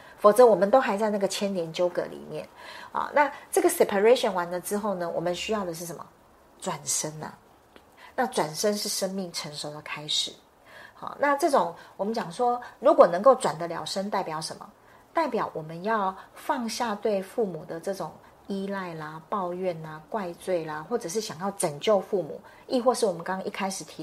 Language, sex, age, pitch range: Chinese, female, 40-59, 175-220 Hz